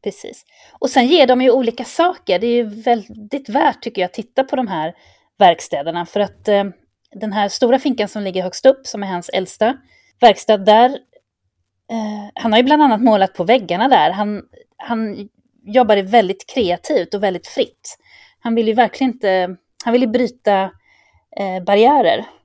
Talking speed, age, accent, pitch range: 180 wpm, 30-49, native, 180-245 Hz